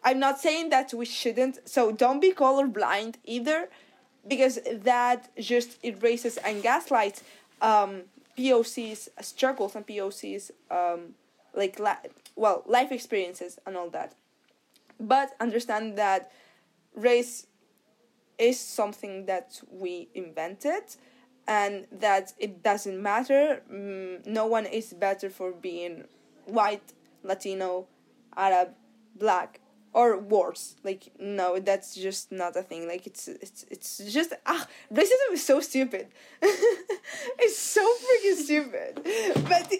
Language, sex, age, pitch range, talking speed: English, female, 20-39, 200-270 Hz, 120 wpm